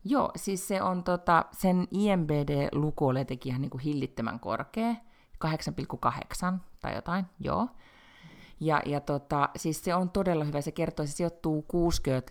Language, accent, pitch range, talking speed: Finnish, native, 130-175 Hz, 140 wpm